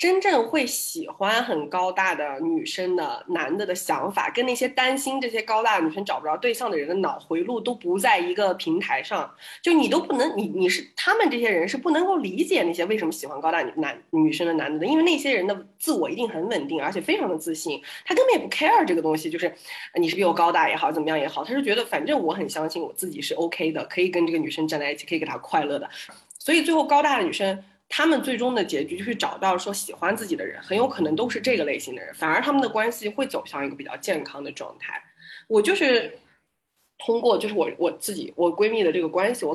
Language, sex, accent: Chinese, female, native